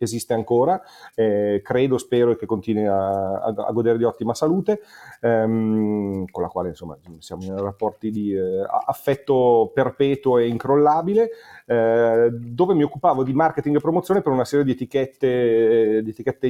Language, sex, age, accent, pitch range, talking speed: Italian, male, 40-59, native, 110-140 Hz, 165 wpm